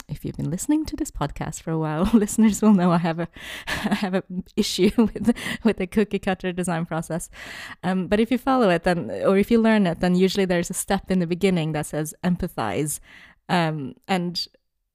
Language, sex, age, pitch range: English, female, 20-39, 155-205 Hz